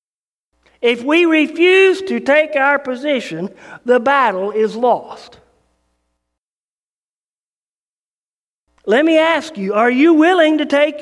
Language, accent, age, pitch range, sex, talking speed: English, American, 50-69, 185-300 Hz, male, 110 wpm